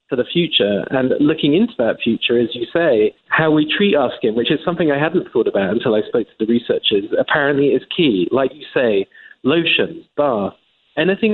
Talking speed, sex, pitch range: 200 wpm, male, 120-145 Hz